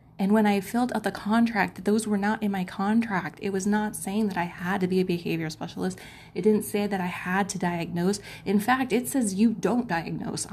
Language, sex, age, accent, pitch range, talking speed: English, female, 20-39, American, 170-210 Hz, 230 wpm